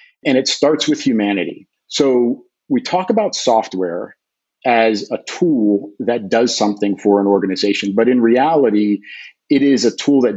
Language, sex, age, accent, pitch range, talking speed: English, male, 50-69, American, 105-135 Hz, 155 wpm